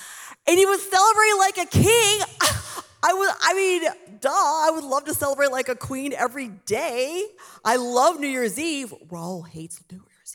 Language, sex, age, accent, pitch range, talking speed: English, female, 30-49, American, 180-255 Hz, 180 wpm